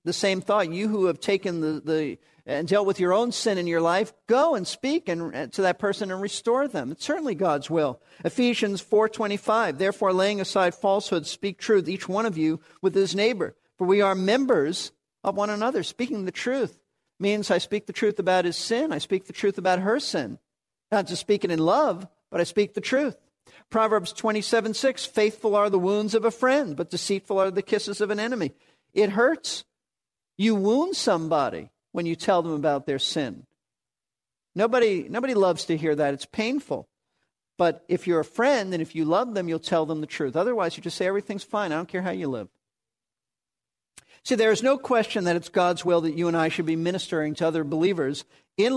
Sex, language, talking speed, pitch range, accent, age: male, English, 210 wpm, 170-220 Hz, American, 50-69